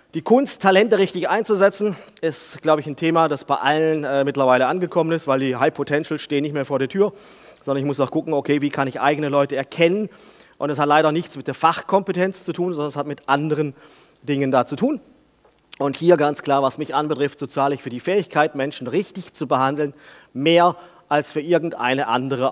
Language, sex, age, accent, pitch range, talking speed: German, male, 30-49, German, 145-190 Hz, 215 wpm